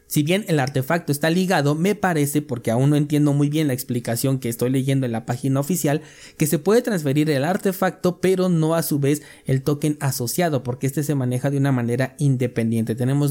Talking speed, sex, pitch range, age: 205 wpm, male, 130-165 Hz, 30-49